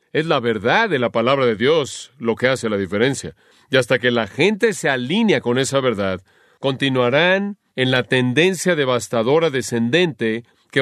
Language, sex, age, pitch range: Spanish, male, 40-59, 120-165 Hz